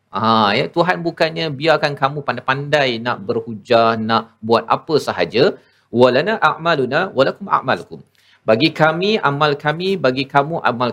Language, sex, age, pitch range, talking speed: Malayalam, male, 40-59, 125-155 Hz, 130 wpm